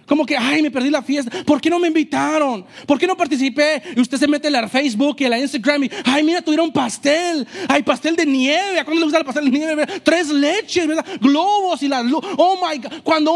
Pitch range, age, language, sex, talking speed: 220-290 Hz, 30-49, English, male, 240 wpm